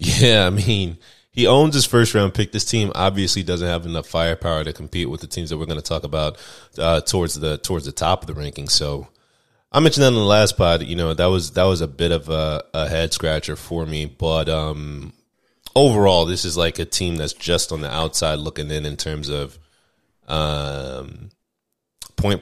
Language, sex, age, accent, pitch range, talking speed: English, male, 30-49, American, 80-100 Hz, 210 wpm